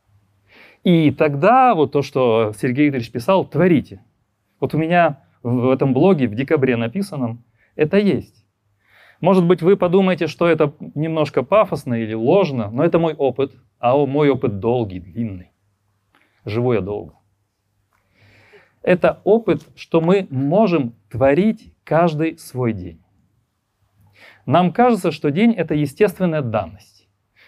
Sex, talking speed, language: male, 125 wpm, Ukrainian